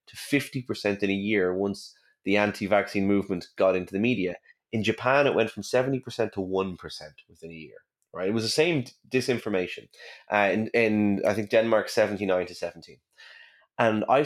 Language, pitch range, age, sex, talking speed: English, 100-145 Hz, 30-49, male, 185 wpm